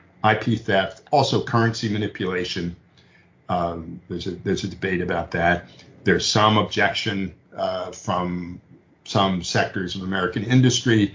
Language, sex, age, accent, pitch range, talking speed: English, male, 50-69, American, 90-115 Hz, 120 wpm